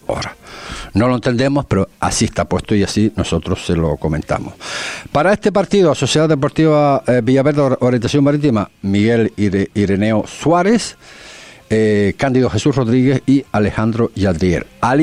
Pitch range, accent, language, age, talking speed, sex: 90-130 Hz, Spanish, Spanish, 60-79, 140 wpm, male